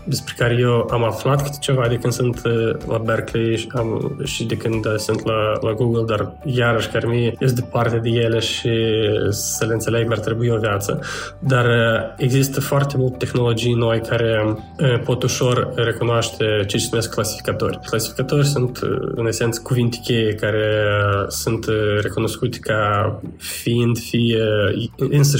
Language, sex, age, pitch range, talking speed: Romanian, male, 20-39, 110-120 Hz, 145 wpm